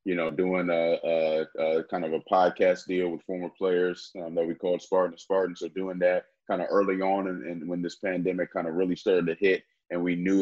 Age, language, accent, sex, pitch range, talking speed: 30-49, English, American, male, 85-95 Hz, 230 wpm